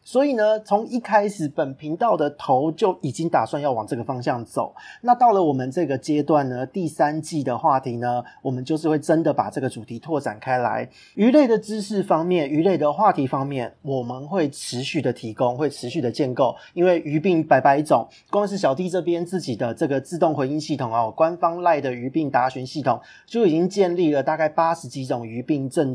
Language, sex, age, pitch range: Chinese, male, 30-49, 130-175 Hz